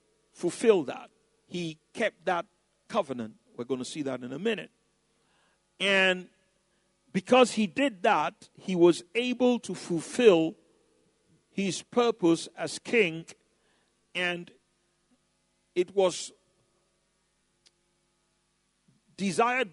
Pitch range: 175-235 Hz